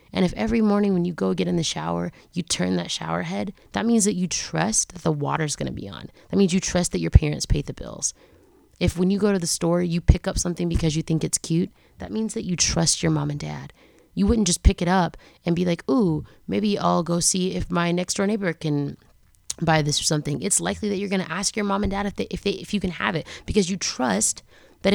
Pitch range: 150-195 Hz